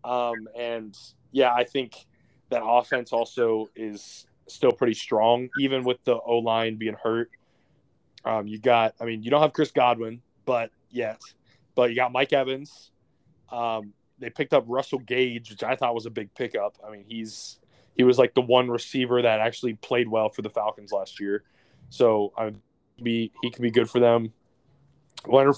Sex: male